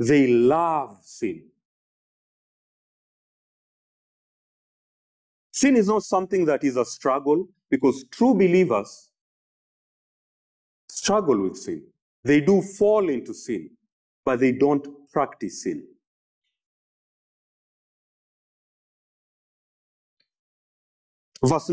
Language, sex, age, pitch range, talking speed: English, male, 50-69, 125-190 Hz, 75 wpm